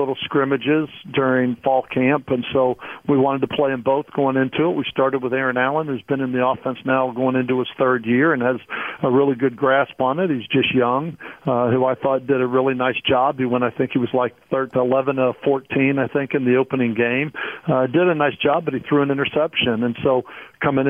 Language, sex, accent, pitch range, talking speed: English, male, American, 125-135 Hz, 240 wpm